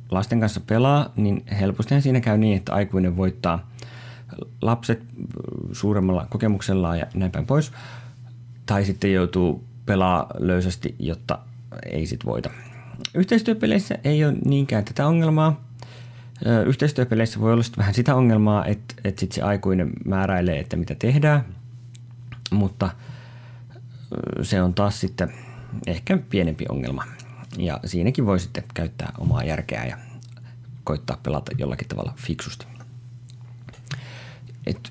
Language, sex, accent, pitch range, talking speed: Finnish, male, native, 100-125 Hz, 115 wpm